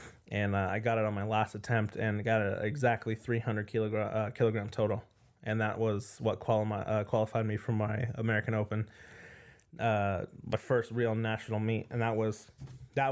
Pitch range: 105-120 Hz